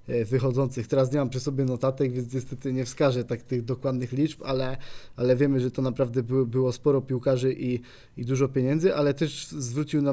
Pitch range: 120-140 Hz